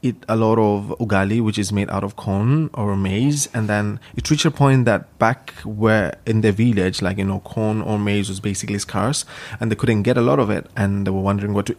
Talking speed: 245 wpm